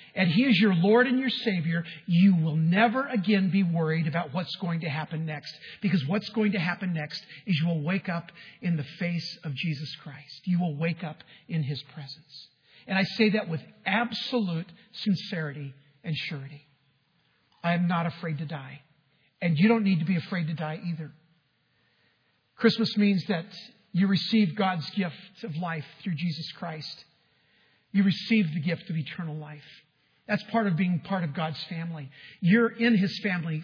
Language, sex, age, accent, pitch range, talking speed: English, male, 50-69, American, 160-210 Hz, 180 wpm